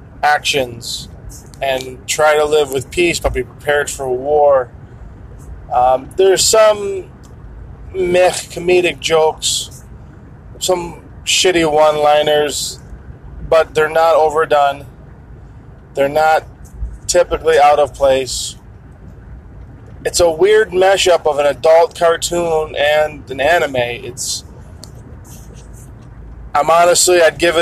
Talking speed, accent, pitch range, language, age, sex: 100 wpm, American, 130-170 Hz, English, 20-39, male